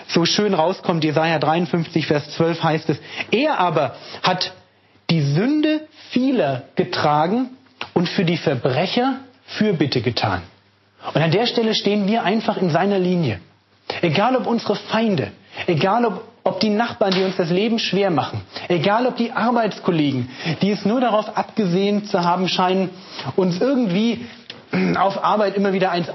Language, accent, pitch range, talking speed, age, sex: German, German, 160-215 Hz, 150 wpm, 30-49, male